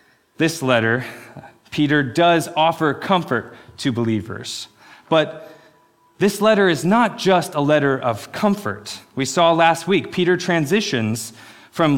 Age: 30-49